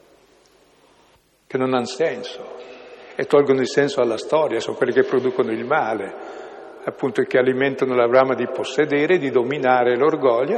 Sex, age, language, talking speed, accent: male, 60-79, Italian, 155 wpm, native